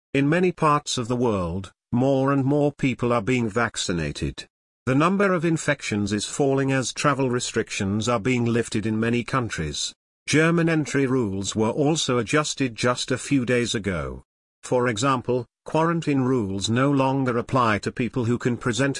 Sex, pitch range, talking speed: male, 110-140 Hz, 160 wpm